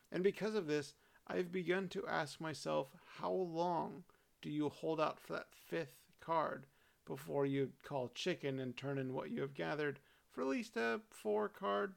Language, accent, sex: English, American, male